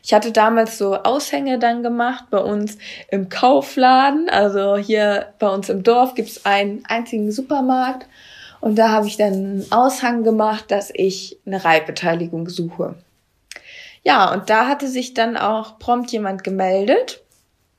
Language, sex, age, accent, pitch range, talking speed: German, female, 20-39, German, 205-245 Hz, 150 wpm